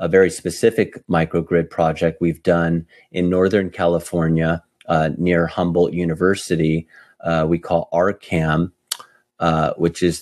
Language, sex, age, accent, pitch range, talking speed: English, male, 30-49, American, 80-90 Hz, 125 wpm